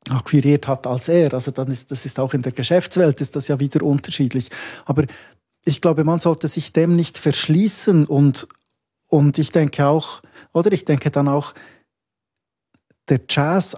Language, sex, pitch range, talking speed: German, male, 130-155 Hz, 170 wpm